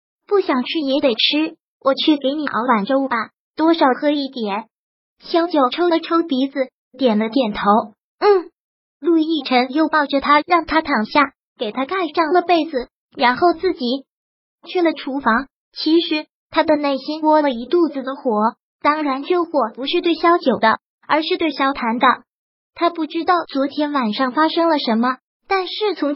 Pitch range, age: 265-325 Hz, 20-39